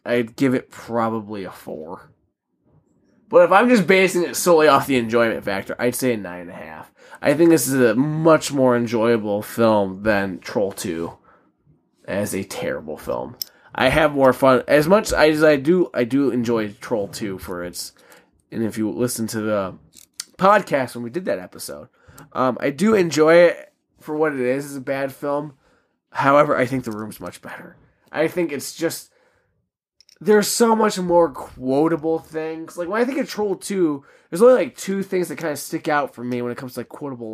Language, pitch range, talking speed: English, 125-205 Hz, 200 wpm